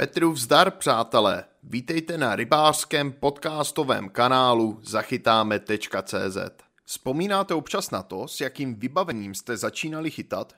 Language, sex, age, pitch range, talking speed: Czech, male, 30-49, 120-175 Hz, 110 wpm